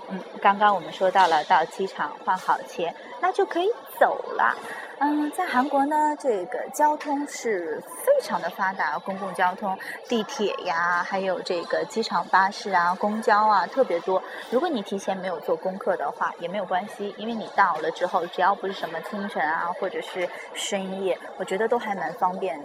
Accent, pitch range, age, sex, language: native, 175-230 Hz, 20-39, female, Chinese